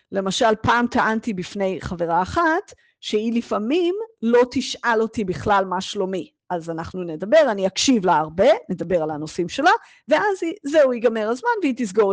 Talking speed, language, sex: 155 wpm, Hebrew, female